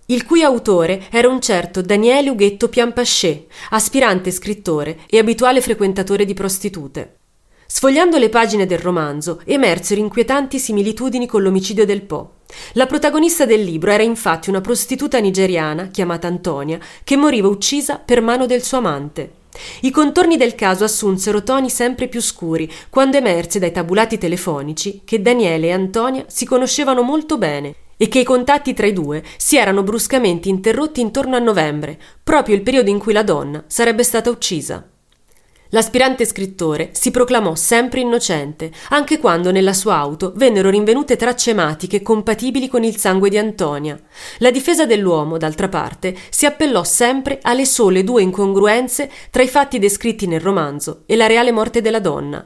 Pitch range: 185-250 Hz